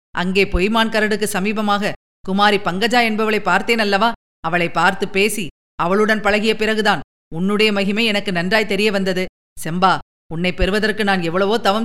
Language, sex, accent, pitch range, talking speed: Tamil, female, native, 195-245 Hz, 130 wpm